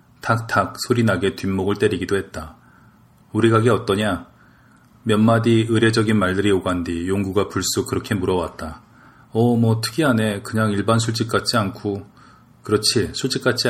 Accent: native